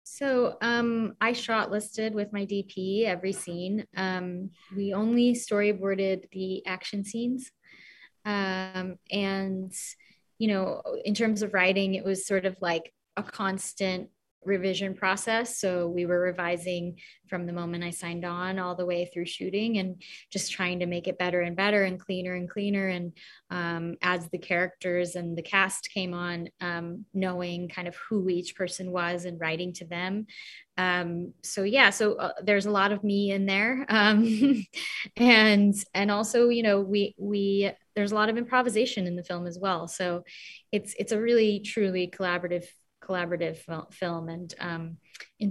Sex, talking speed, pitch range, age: female, 165 wpm, 180-205 Hz, 20-39